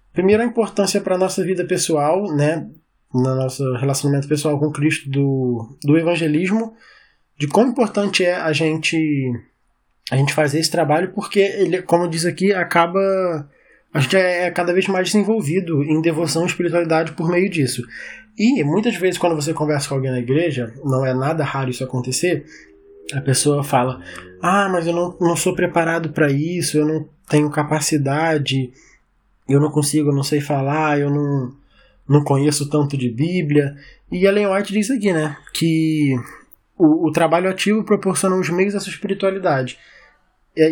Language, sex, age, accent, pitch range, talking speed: Portuguese, male, 20-39, Brazilian, 145-185 Hz, 165 wpm